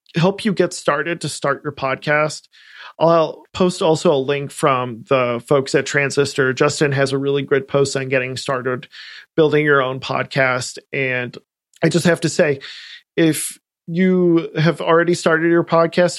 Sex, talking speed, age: male, 165 wpm, 40-59